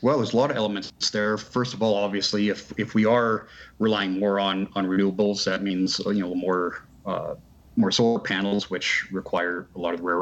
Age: 30-49